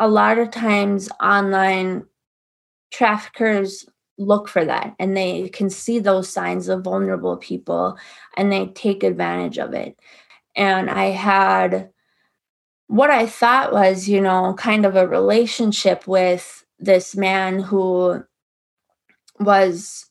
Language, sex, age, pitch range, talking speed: English, female, 20-39, 190-225 Hz, 125 wpm